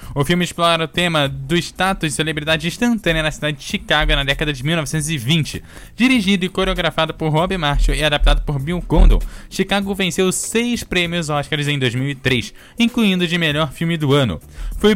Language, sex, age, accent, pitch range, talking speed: Portuguese, male, 10-29, Brazilian, 140-180 Hz, 175 wpm